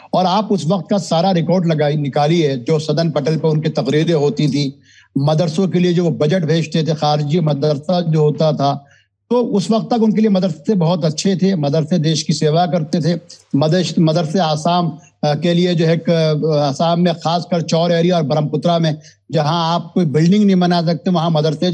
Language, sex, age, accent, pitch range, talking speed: Hindi, male, 60-79, native, 155-200 Hz, 195 wpm